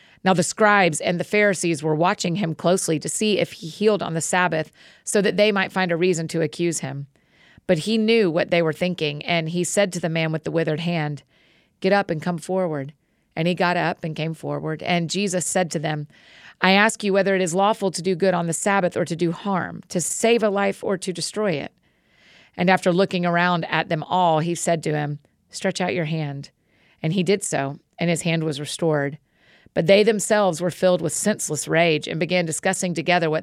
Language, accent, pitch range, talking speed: English, American, 160-190 Hz, 225 wpm